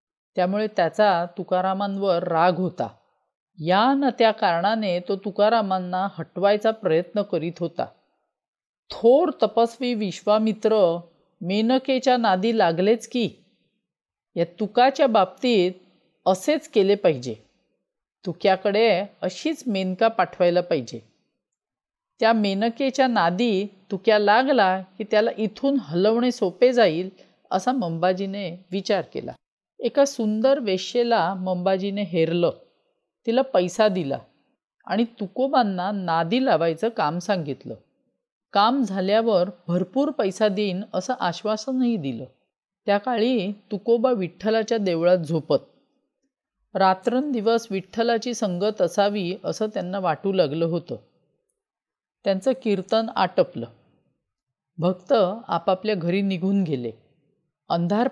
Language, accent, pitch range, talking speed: Marathi, native, 180-230 Hz, 95 wpm